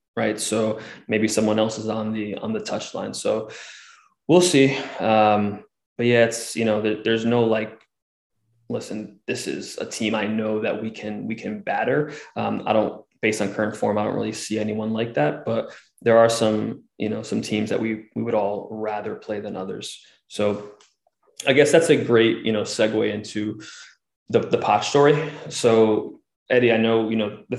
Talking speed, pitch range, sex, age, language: 195 wpm, 110-115 Hz, male, 20-39, English